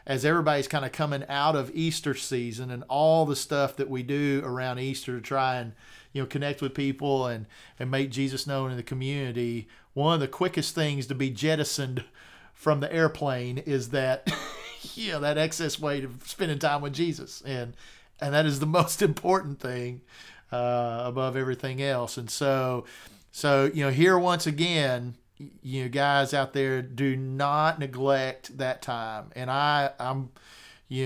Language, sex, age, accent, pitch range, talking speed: English, male, 40-59, American, 125-150 Hz, 175 wpm